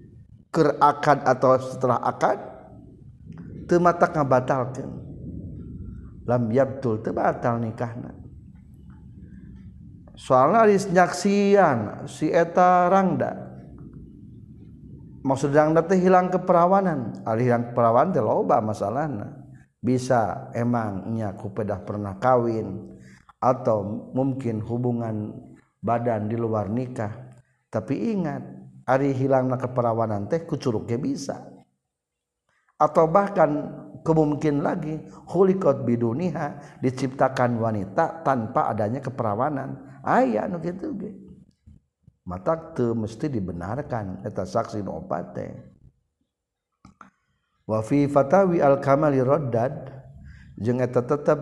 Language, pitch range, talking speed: Indonesian, 110-145 Hz, 90 wpm